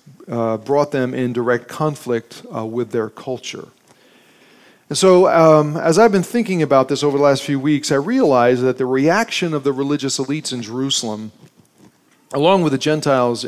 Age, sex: 40-59, male